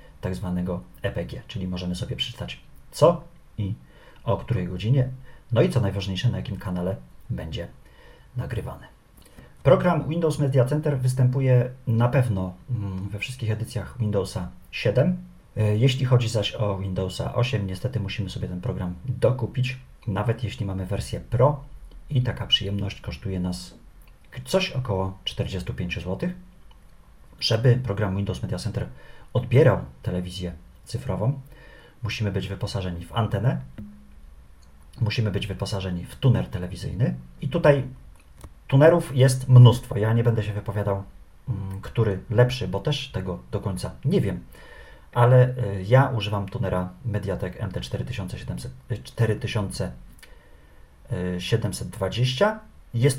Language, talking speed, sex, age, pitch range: Polish, 115 wpm, male, 40-59, 95-125 Hz